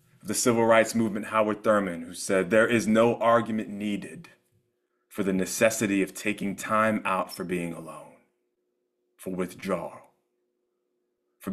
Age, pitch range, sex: 30-49, 95-115 Hz, male